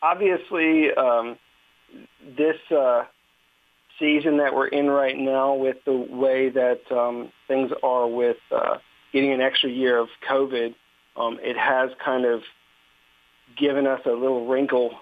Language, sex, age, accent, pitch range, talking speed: English, male, 40-59, American, 115-130 Hz, 140 wpm